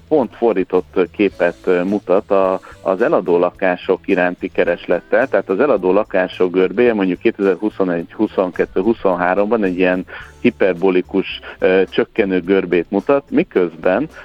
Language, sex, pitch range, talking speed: Hungarian, male, 90-100 Hz, 105 wpm